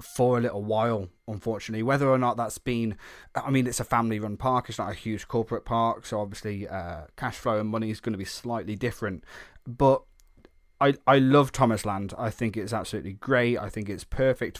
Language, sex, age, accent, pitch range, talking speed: English, male, 20-39, British, 110-130 Hz, 205 wpm